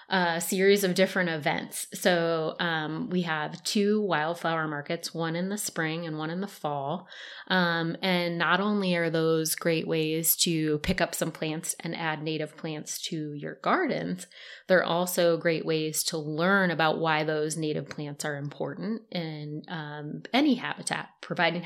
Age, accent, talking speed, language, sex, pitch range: 20-39, American, 165 wpm, English, female, 155-180 Hz